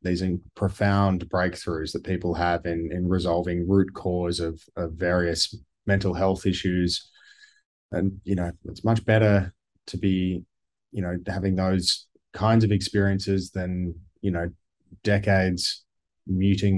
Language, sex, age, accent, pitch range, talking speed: English, male, 20-39, Australian, 90-100 Hz, 130 wpm